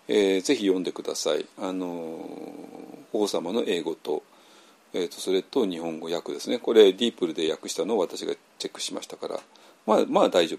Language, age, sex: Japanese, 40-59, male